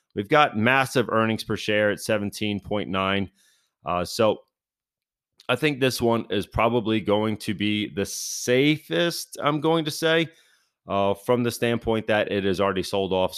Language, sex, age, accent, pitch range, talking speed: English, male, 30-49, American, 95-115 Hz, 150 wpm